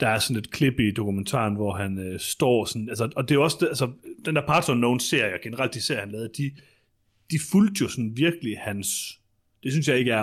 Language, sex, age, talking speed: Danish, male, 30-49, 230 wpm